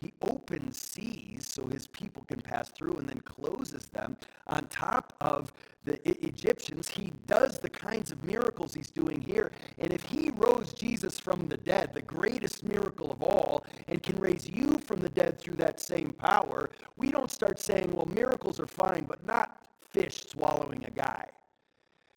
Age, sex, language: 50-69, male, English